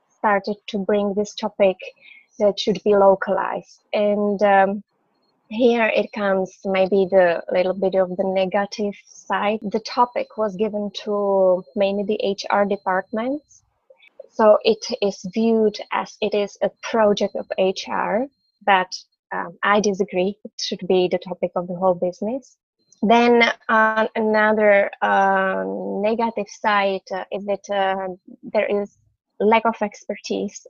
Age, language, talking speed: 20-39, English, 135 wpm